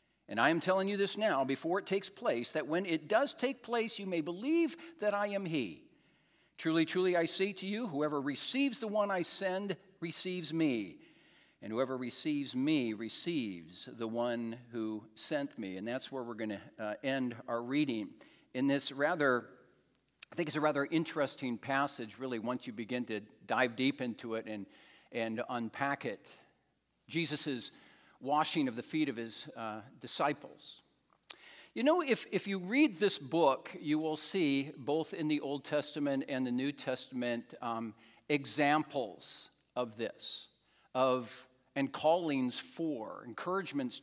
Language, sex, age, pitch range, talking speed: English, male, 50-69, 125-185 Hz, 160 wpm